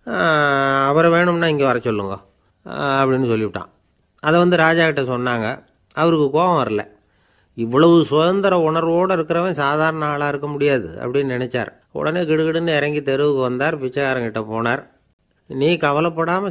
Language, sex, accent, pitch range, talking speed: Tamil, male, native, 115-155 Hz, 125 wpm